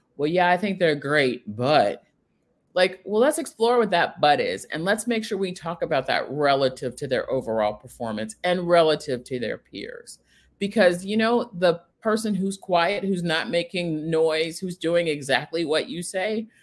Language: English